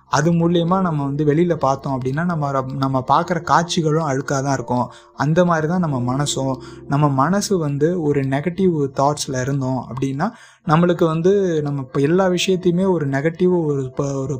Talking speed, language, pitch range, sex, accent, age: 140 wpm, Tamil, 135-170 Hz, male, native, 20-39